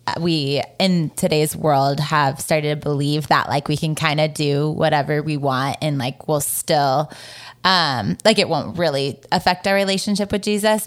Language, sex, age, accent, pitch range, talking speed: English, female, 20-39, American, 150-195 Hz, 175 wpm